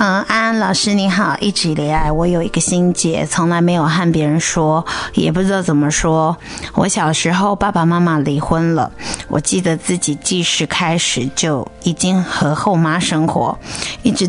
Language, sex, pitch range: Chinese, female, 155-190 Hz